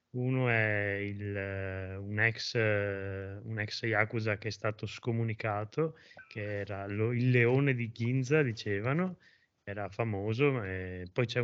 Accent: native